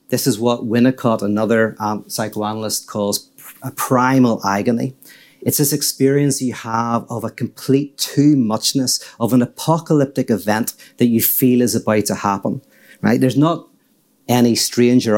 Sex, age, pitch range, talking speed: male, 40-59, 110-135 Hz, 140 wpm